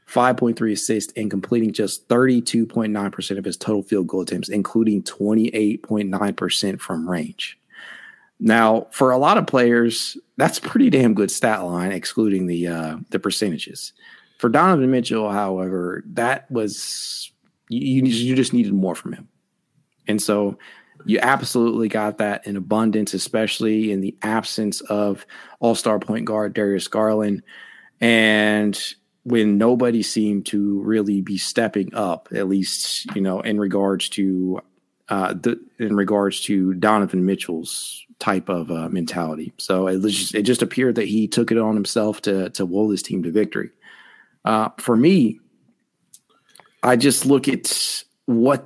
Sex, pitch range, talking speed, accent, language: male, 100-115 Hz, 145 wpm, American, English